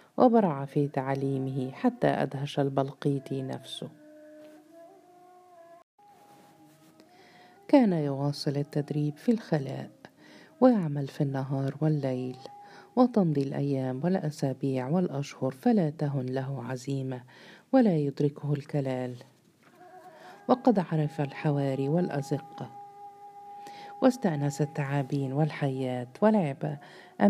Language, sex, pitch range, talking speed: Arabic, female, 135-220 Hz, 75 wpm